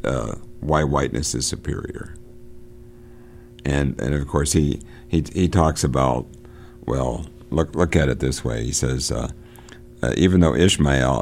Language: English